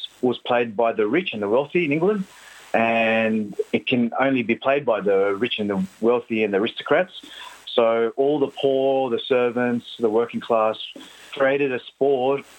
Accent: Australian